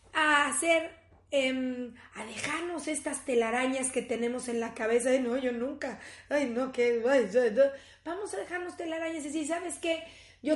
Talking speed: 170 wpm